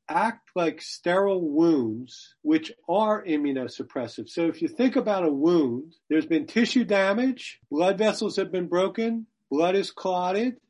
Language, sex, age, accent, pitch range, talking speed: English, male, 50-69, American, 165-215 Hz, 145 wpm